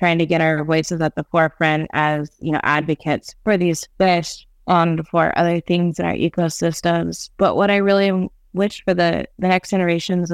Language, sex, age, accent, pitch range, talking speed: English, female, 20-39, American, 155-170 Hz, 185 wpm